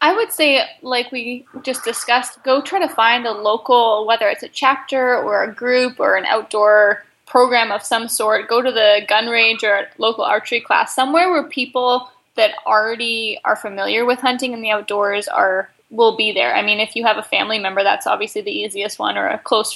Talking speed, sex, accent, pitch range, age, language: 210 wpm, female, American, 210-255 Hz, 10-29, English